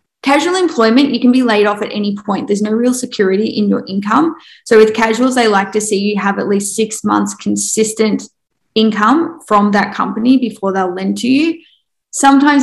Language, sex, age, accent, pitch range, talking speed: English, female, 20-39, Australian, 200-250 Hz, 195 wpm